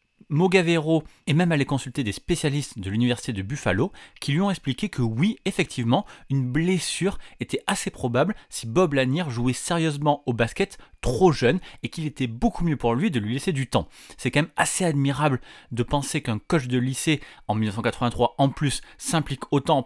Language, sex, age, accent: French, male, 30-49, French